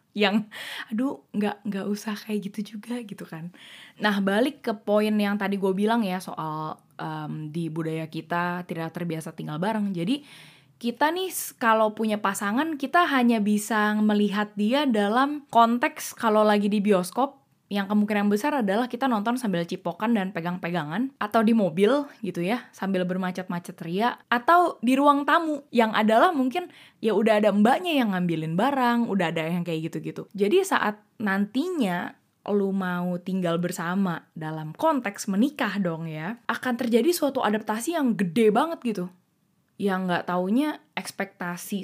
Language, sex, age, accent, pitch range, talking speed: Indonesian, female, 20-39, native, 175-230 Hz, 150 wpm